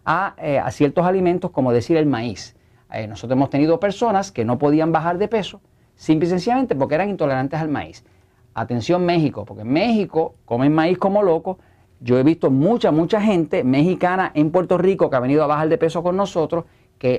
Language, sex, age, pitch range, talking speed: Spanish, male, 40-59, 125-195 Hz, 200 wpm